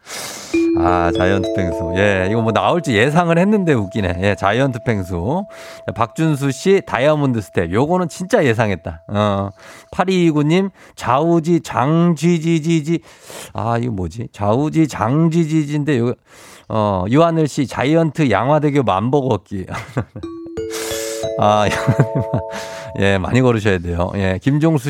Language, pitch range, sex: Korean, 110-165 Hz, male